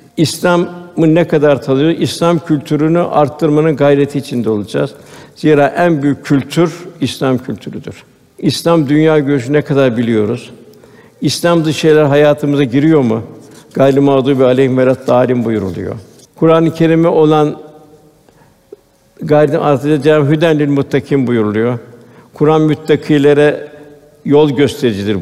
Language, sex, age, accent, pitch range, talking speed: Turkish, male, 60-79, native, 130-155 Hz, 105 wpm